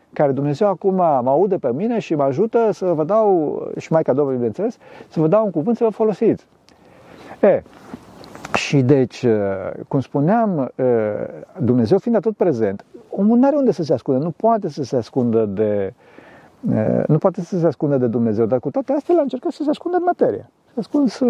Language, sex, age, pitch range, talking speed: Romanian, male, 50-69, 135-210 Hz, 195 wpm